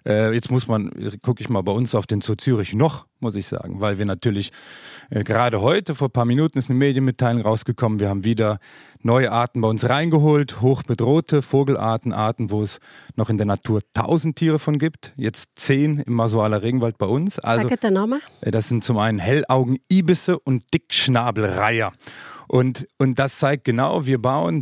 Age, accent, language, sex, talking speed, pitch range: 40-59, German, German, male, 175 wpm, 115-145 Hz